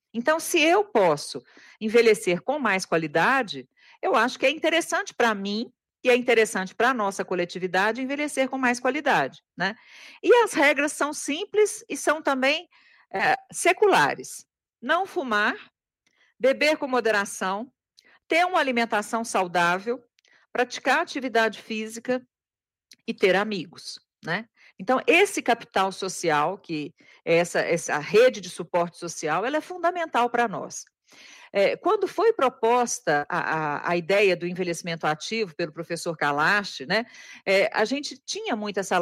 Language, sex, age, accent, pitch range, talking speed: Portuguese, female, 50-69, Brazilian, 190-275 Hz, 130 wpm